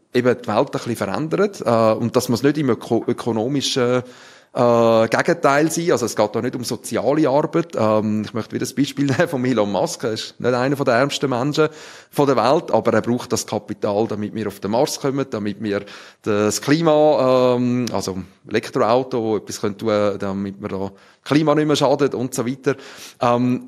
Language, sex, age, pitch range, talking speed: German, male, 30-49, 110-140 Hz, 195 wpm